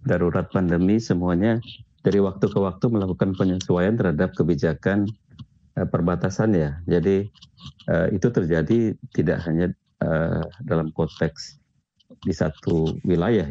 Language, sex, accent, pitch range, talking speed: Indonesian, male, native, 80-105 Hz, 100 wpm